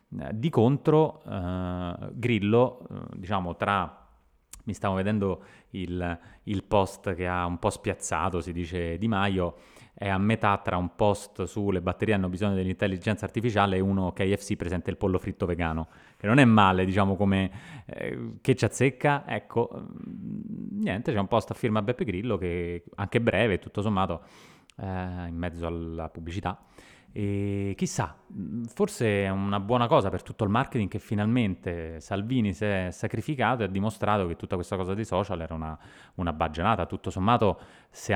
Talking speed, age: 165 wpm, 20-39